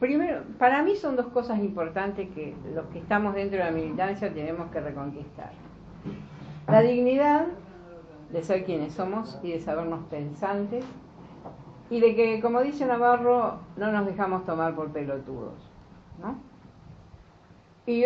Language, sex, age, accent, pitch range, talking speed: Spanish, female, 50-69, Argentinian, 155-230 Hz, 140 wpm